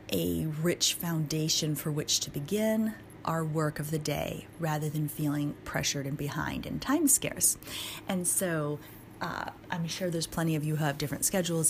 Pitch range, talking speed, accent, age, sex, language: 145-165 Hz, 175 wpm, American, 30-49, female, English